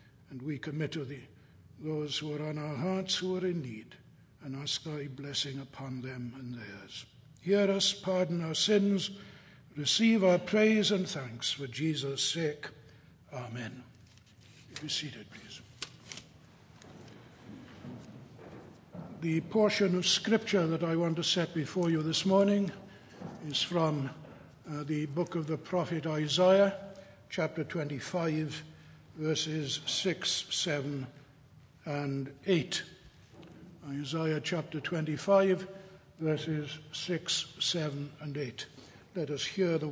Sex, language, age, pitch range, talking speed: male, English, 60-79, 140-185 Hz, 125 wpm